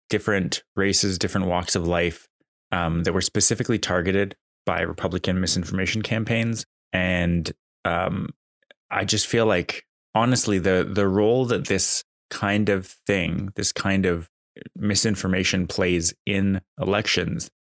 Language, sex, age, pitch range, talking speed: English, male, 20-39, 90-105 Hz, 125 wpm